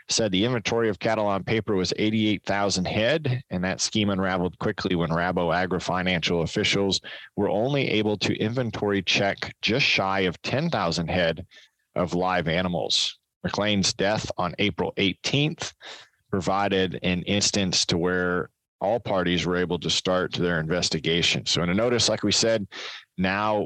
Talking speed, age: 150 wpm, 30-49